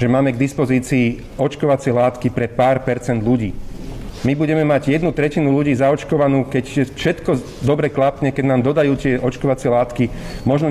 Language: Slovak